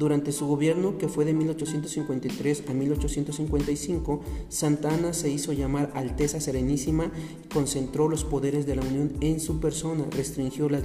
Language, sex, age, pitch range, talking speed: Spanish, male, 40-59, 135-150 Hz, 145 wpm